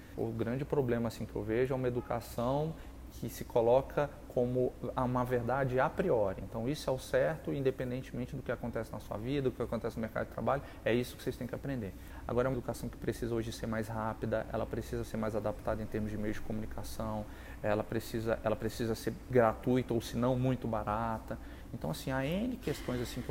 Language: Portuguese